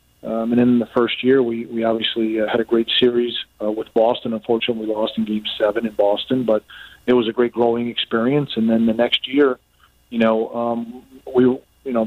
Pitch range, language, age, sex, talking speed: 115-125 Hz, English, 40-59, male, 220 wpm